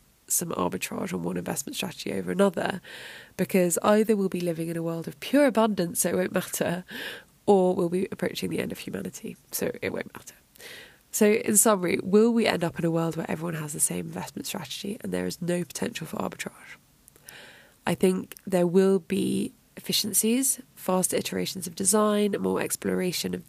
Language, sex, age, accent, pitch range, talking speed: English, female, 20-39, British, 175-205 Hz, 185 wpm